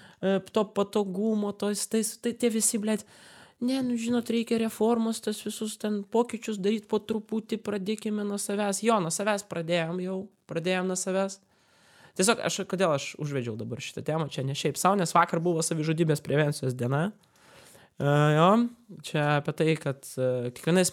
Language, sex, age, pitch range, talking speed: English, male, 20-39, 135-200 Hz, 165 wpm